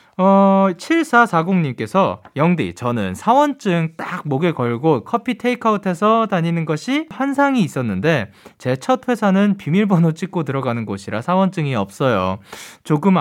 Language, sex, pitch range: Korean, male, 140-225 Hz